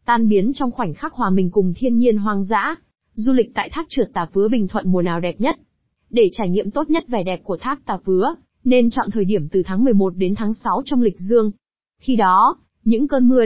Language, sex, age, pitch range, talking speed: Vietnamese, female, 20-39, 195-255 Hz, 240 wpm